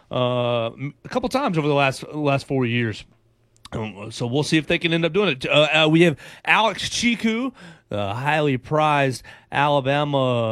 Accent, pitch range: American, 130-165 Hz